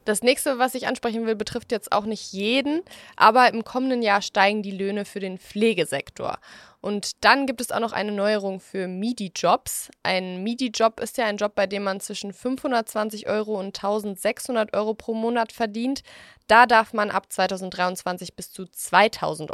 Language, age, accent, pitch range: English, 20-39, German, 195-235 Hz